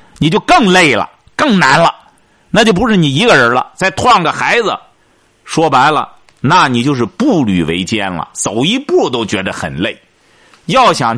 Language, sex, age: Chinese, male, 50-69